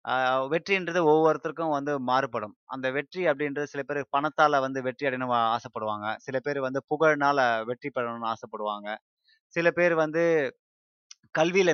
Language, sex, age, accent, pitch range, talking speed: Tamil, male, 20-39, native, 130-165 Hz, 130 wpm